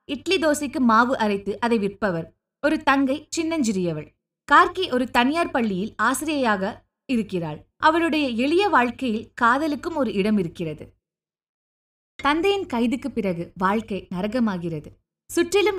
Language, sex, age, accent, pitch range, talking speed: Tamil, female, 20-39, native, 200-285 Hz, 105 wpm